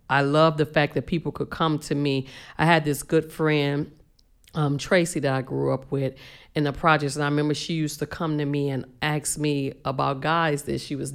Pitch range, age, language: 145-180 Hz, 40-59, English